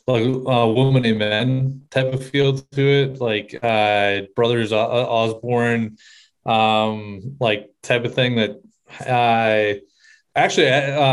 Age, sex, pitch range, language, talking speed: 20-39, male, 110-130 Hz, English, 120 wpm